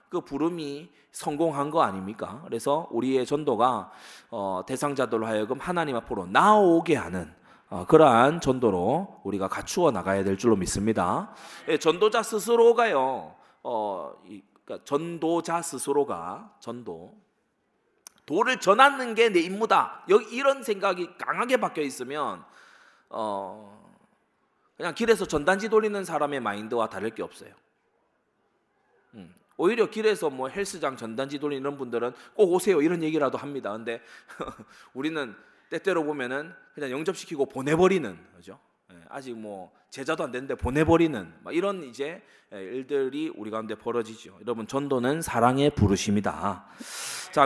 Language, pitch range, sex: Korean, 120-190 Hz, male